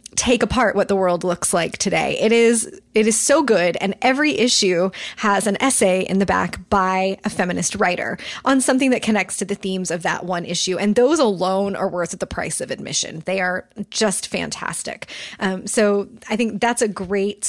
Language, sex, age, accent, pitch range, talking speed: English, female, 20-39, American, 195-235 Hz, 200 wpm